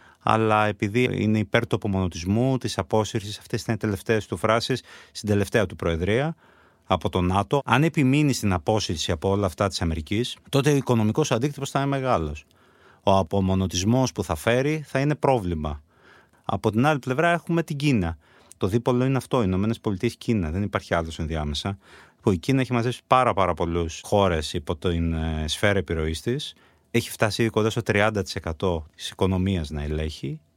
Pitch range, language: 90-130 Hz, Greek